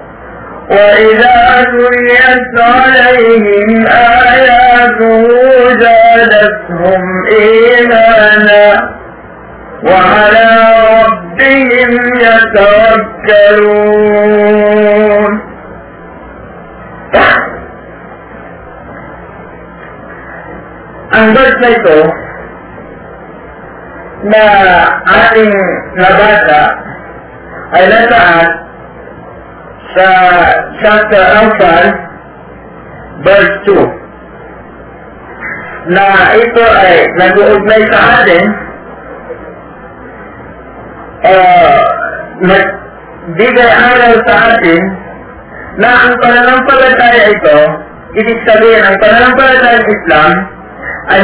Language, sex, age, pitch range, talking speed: Filipino, male, 50-69, 195-245 Hz, 45 wpm